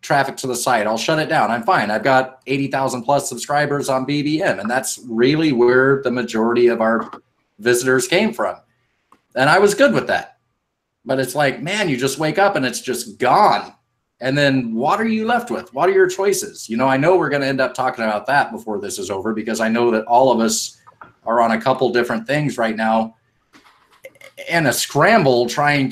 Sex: male